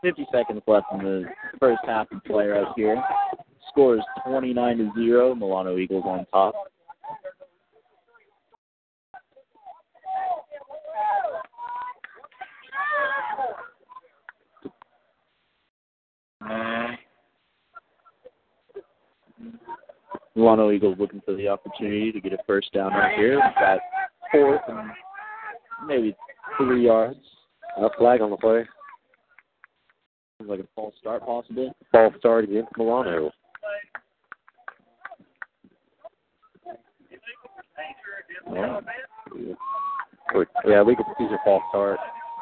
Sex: male